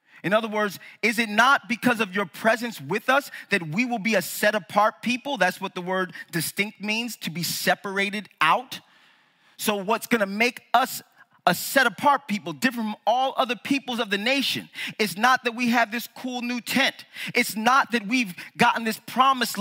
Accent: American